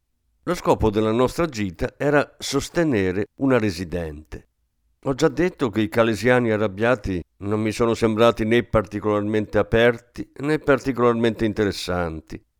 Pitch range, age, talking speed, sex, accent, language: 100-140 Hz, 50-69, 125 wpm, male, native, Italian